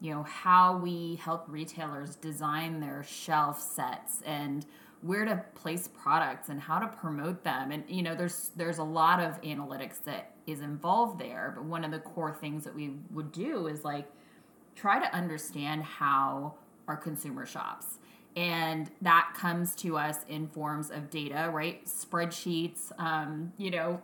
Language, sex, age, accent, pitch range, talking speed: English, female, 20-39, American, 150-180 Hz, 165 wpm